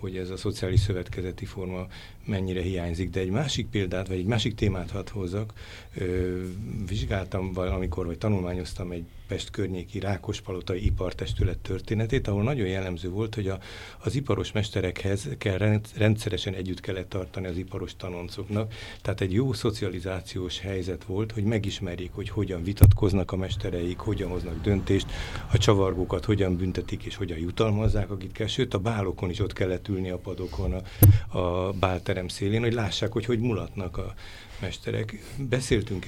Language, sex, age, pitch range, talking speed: Hungarian, male, 60-79, 90-105 Hz, 145 wpm